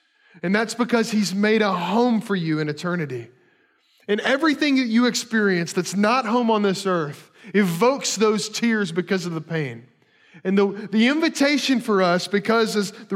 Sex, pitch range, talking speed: male, 165-240 Hz, 175 wpm